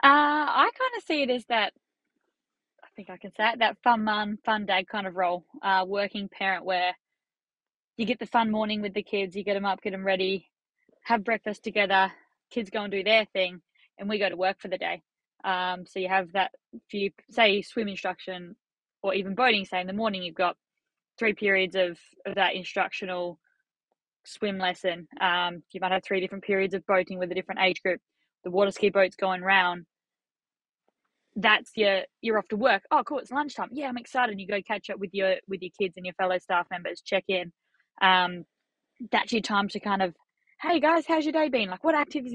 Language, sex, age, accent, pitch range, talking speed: English, female, 20-39, Australian, 185-220 Hz, 215 wpm